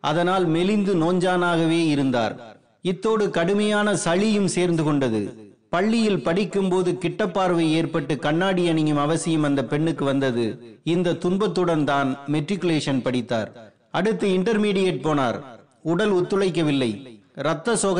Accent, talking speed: native, 90 wpm